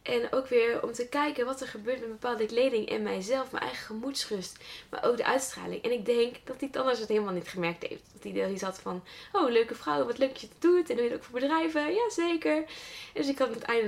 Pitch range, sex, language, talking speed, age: 210-270 Hz, female, Dutch, 260 wpm, 10-29